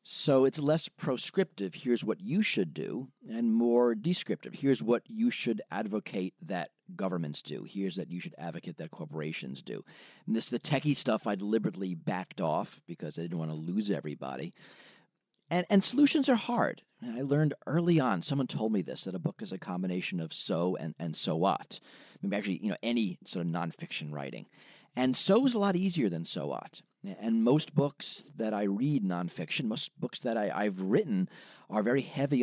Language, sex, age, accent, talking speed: English, male, 40-59, American, 195 wpm